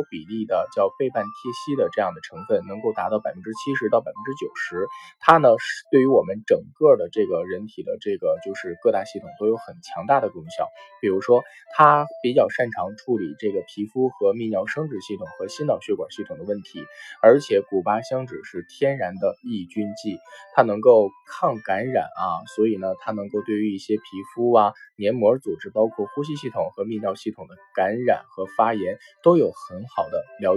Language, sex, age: Chinese, male, 10-29